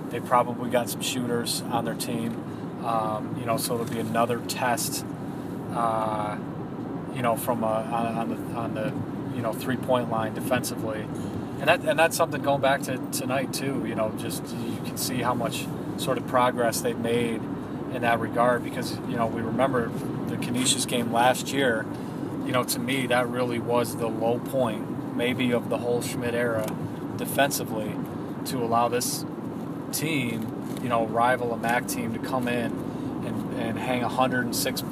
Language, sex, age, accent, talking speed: English, male, 30-49, American, 175 wpm